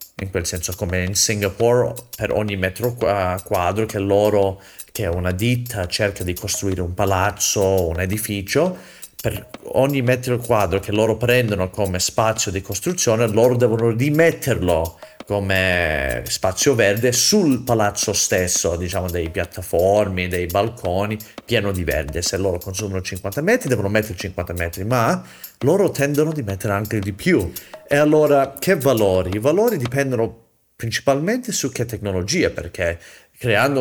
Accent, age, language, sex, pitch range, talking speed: native, 30-49, Italian, male, 95-120 Hz, 145 wpm